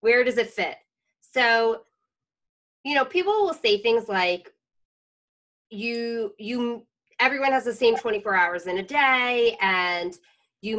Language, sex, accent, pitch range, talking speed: English, female, American, 190-245 Hz, 140 wpm